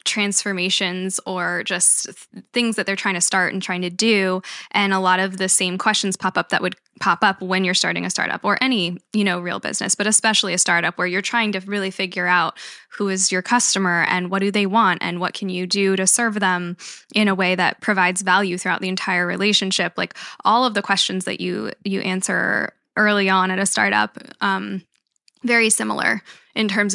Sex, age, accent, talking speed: female, 10-29, American, 210 wpm